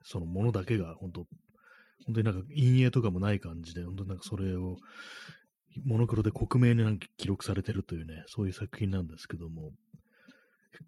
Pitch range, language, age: 90-115 Hz, Japanese, 30-49